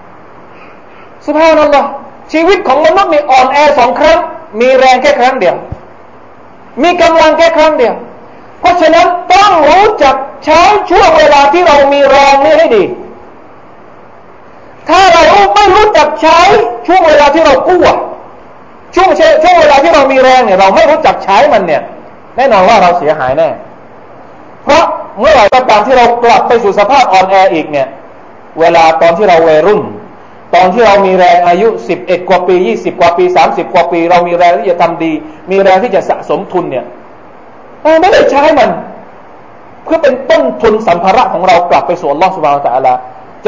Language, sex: Thai, male